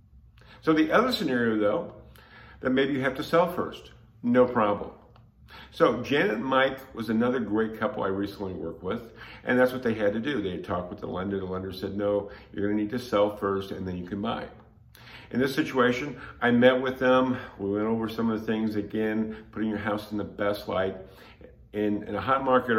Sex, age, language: male, 50-69, English